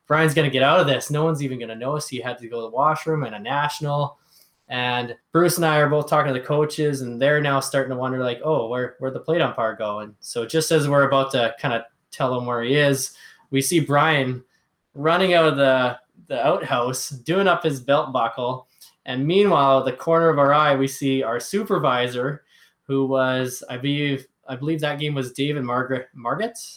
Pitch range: 125-155 Hz